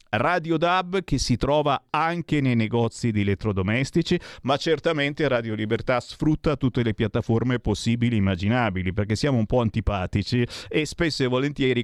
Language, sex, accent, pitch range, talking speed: Italian, male, native, 110-155 Hz, 145 wpm